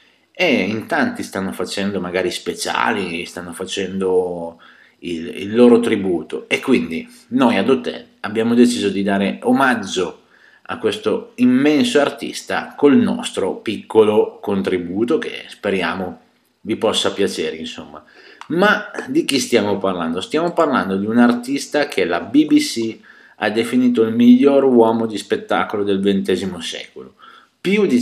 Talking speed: 130 wpm